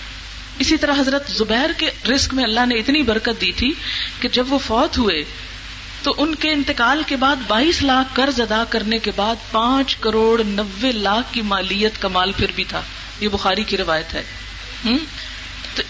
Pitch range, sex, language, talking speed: 220-315 Hz, female, Urdu, 185 wpm